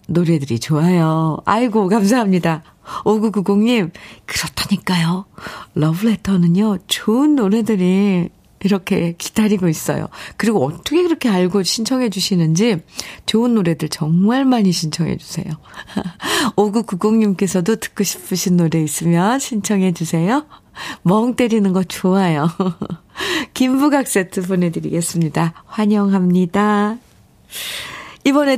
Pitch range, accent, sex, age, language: 170-215 Hz, native, female, 40-59, Korean